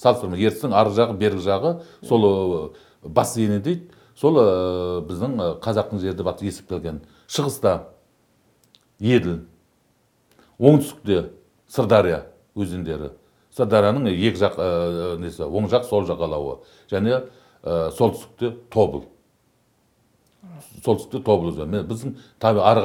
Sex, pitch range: male, 100-120 Hz